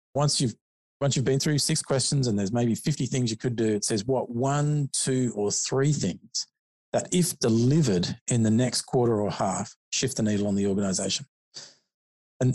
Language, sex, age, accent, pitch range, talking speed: English, male, 40-59, Australian, 105-135 Hz, 190 wpm